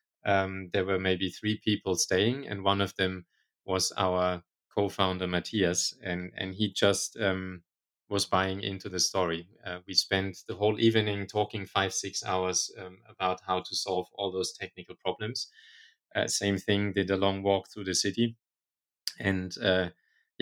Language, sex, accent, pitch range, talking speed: English, male, German, 95-110 Hz, 165 wpm